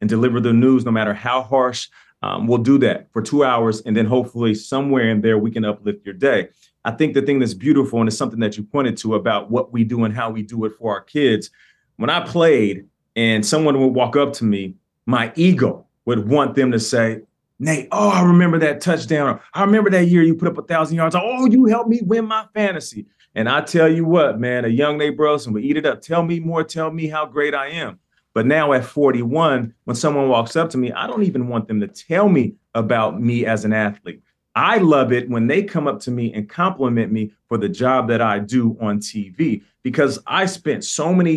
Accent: American